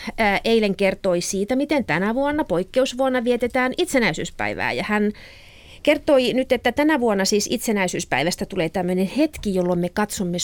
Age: 30-49